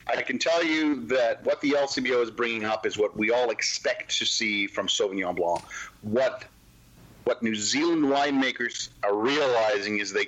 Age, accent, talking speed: 40-59, American, 175 wpm